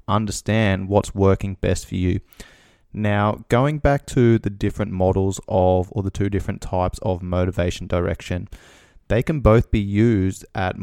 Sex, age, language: male, 20-39, English